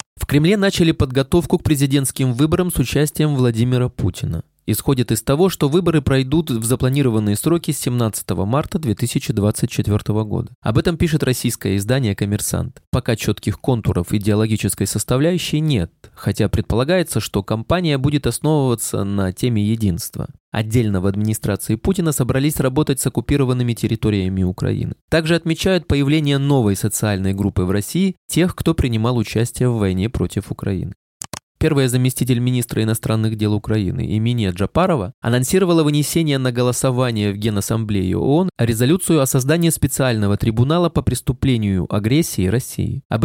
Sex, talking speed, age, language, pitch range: male, 135 wpm, 20-39, Russian, 105-145 Hz